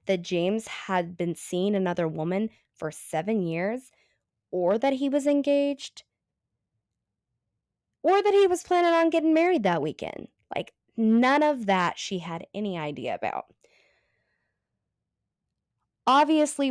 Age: 20-39